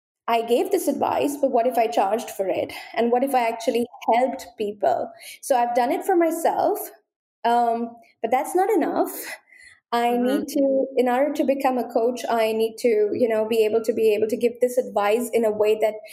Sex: female